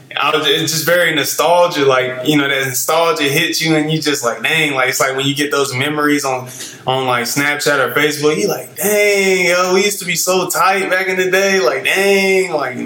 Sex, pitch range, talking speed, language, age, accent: male, 125-155 Hz, 220 wpm, English, 20-39, American